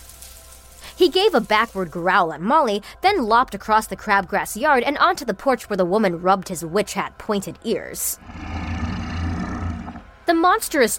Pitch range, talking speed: 185-275 Hz, 145 wpm